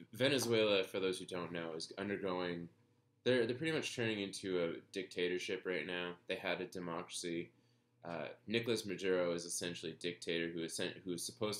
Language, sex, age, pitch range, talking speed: English, male, 20-39, 85-105 Hz, 180 wpm